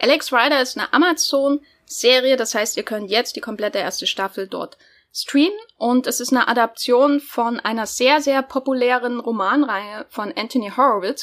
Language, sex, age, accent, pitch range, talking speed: German, female, 10-29, German, 220-275 Hz, 160 wpm